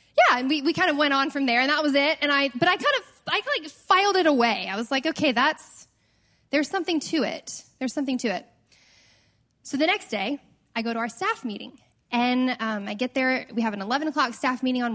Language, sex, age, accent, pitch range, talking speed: English, female, 10-29, American, 210-275 Hz, 245 wpm